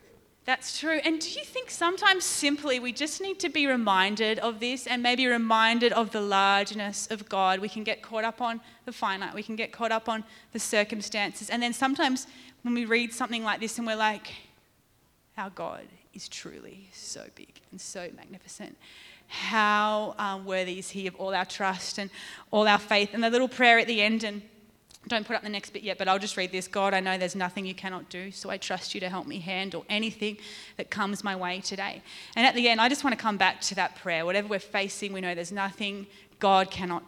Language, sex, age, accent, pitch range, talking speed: English, female, 20-39, Australian, 190-230 Hz, 225 wpm